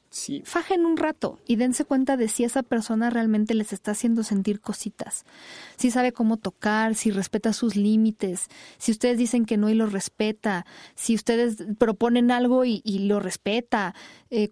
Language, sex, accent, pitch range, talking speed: Spanish, female, Mexican, 210-240 Hz, 170 wpm